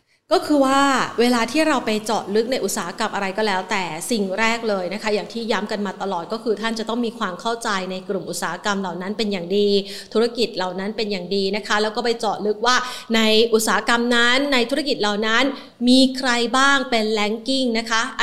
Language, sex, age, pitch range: Thai, female, 20-39, 205-250 Hz